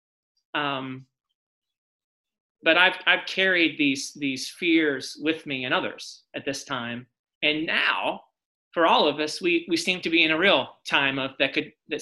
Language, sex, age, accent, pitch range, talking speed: English, male, 30-49, American, 145-190 Hz, 170 wpm